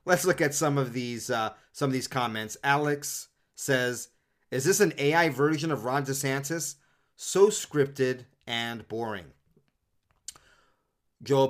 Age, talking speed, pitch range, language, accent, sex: 30-49, 135 wpm, 130-150 Hz, English, American, male